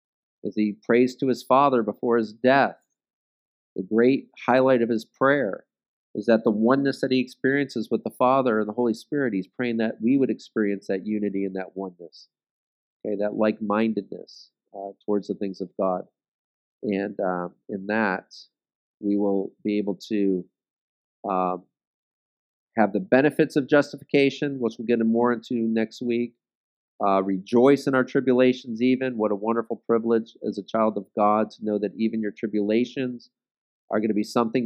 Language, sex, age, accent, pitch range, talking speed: English, male, 40-59, American, 105-125 Hz, 170 wpm